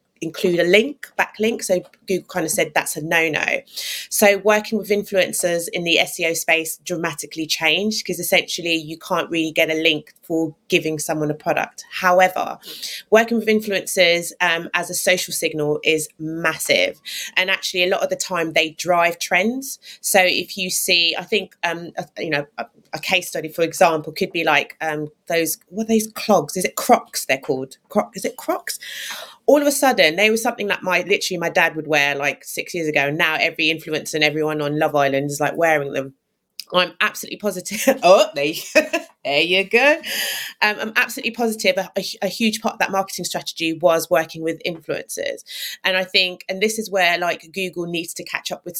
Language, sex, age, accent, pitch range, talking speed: English, female, 20-39, British, 160-200 Hz, 200 wpm